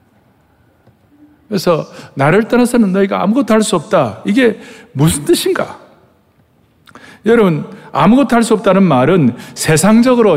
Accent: native